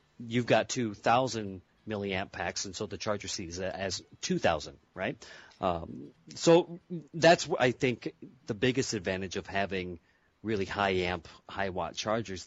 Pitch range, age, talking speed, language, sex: 95-120 Hz, 30-49, 140 wpm, English, male